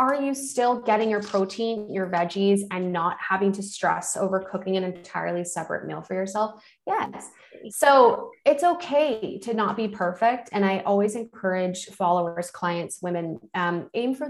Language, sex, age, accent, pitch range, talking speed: English, female, 20-39, American, 180-230 Hz, 165 wpm